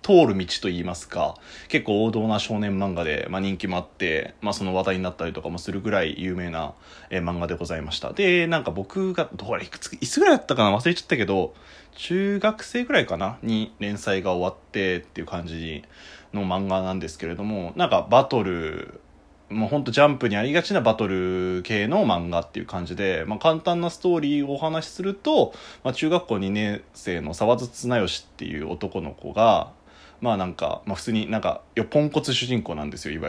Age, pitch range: 20-39, 85-125 Hz